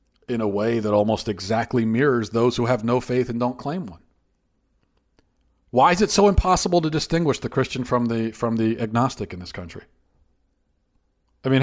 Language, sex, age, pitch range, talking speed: English, male, 40-59, 95-130 Hz, 180 wpm